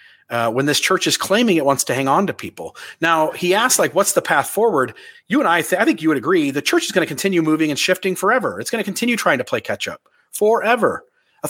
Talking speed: 260 wpm